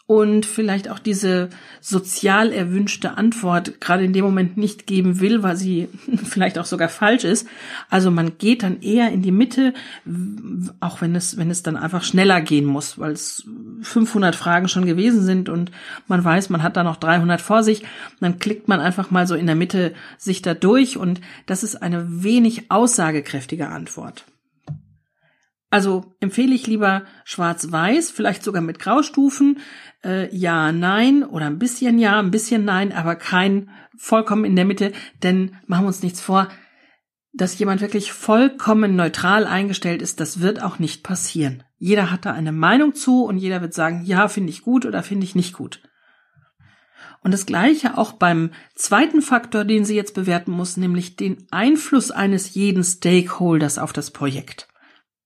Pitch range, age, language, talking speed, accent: 175-220 Hz, 50-69, German, 175 wpm, German